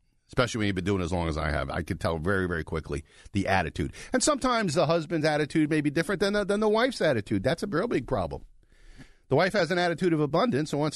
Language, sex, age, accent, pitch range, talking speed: English, male, 50-69, American, 100-155 Hz, 250 wpm